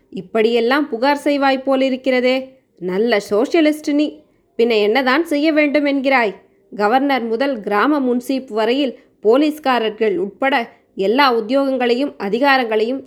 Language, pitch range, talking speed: Tamil, 220-270 Hz, 95 wpm